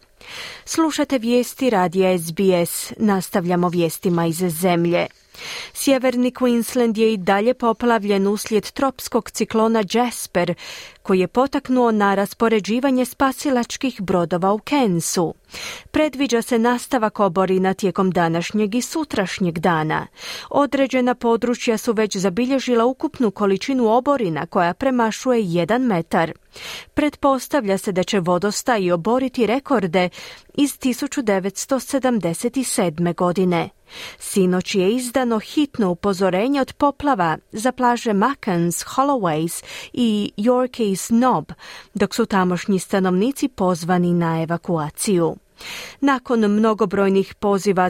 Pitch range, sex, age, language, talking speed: 185-250 Hz, female, 30-49, Croatian, 105 wpm